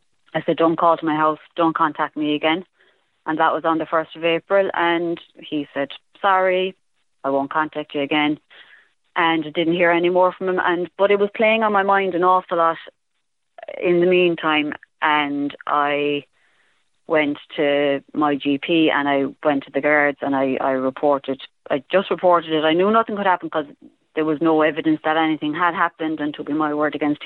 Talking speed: 200 wpm